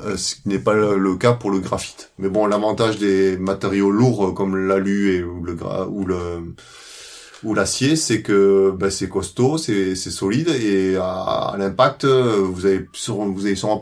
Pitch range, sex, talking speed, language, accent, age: 95-110 Hz, male, 180 wpm, French, French, 30-49